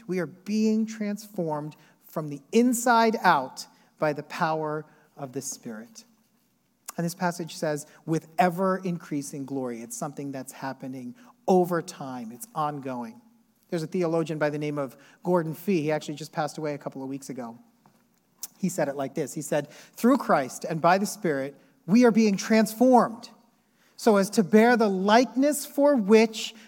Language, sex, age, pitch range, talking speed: English, male, 40-59, 160-235 Hz, 165 wpm